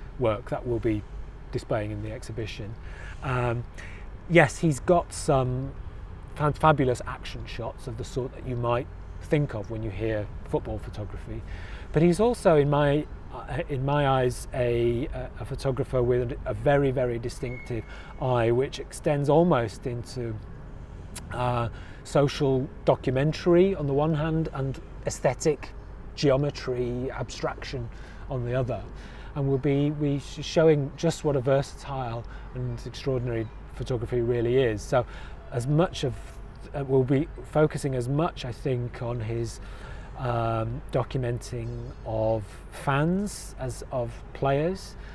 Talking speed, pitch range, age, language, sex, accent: 130 wpm, 115-140 Hz, 30-49, English, male, British